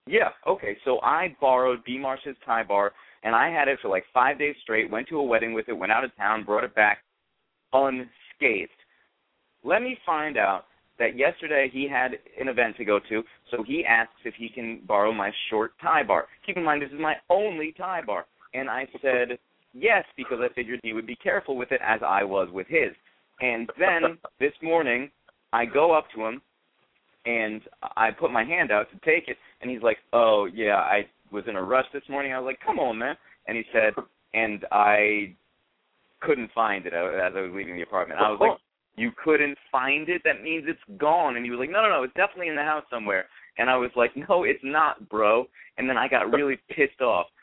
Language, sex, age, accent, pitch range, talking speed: English, male, 30-49, American, 110-145 Hz, 220 wpm